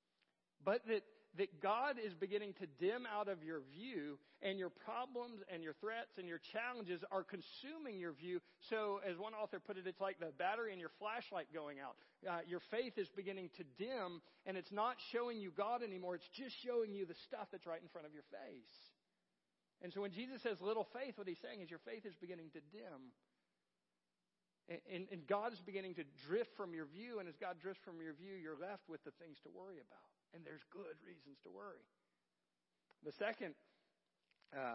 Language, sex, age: English, male, 50-69